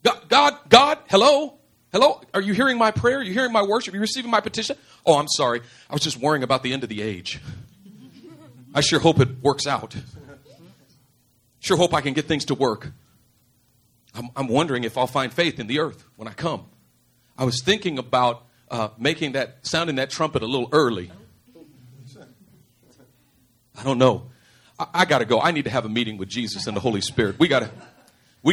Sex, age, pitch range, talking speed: male, 40-59, 120-180 Hz, 205 wpm